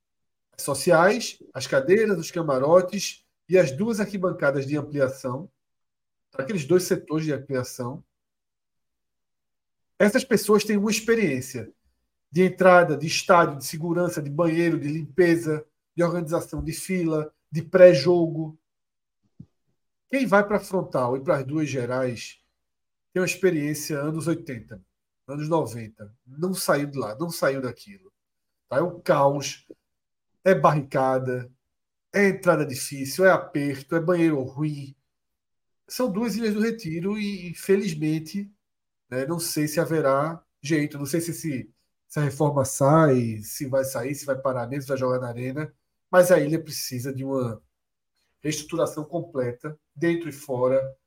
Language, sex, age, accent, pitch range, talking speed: Portuguese, male, 50-69, Brazilian, 135-180 Hz, 135 wpm